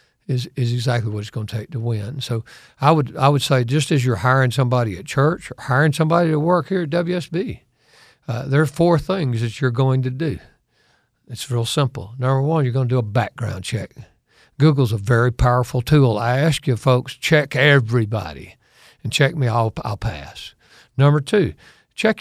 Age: 60-79